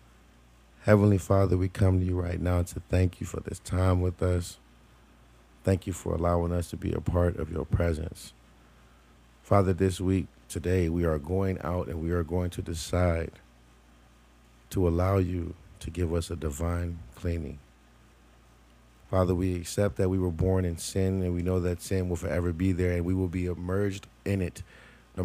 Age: 30-49